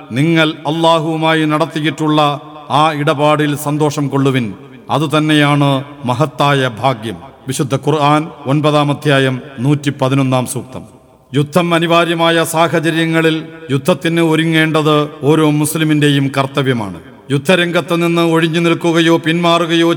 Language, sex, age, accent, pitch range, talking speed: Malayalam, male, 50-69, native, 150-175 Hz, 90 wpm